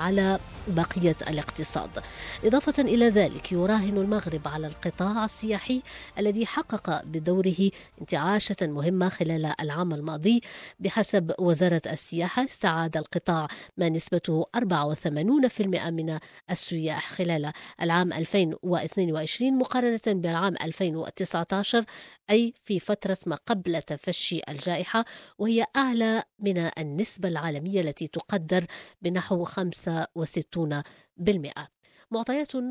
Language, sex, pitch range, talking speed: English, female, 160-205 Hz, 100 wpm